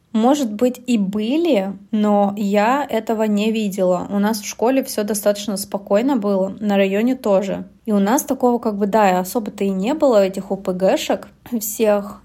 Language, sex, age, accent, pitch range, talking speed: Russian, female, 20-39, native, 200-230 Hz, 165 wpm